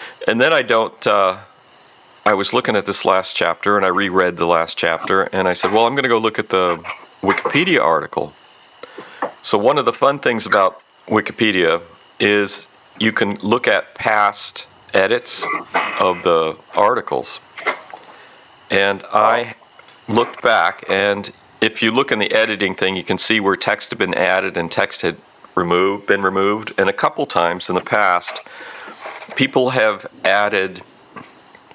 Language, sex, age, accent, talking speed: English, male, 40-59, American, 160 wpm